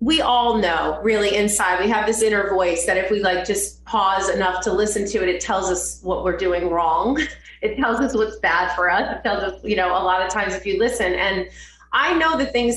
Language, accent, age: English, American, 30-49